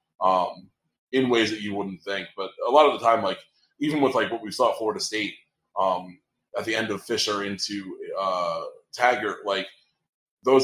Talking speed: 190 wpm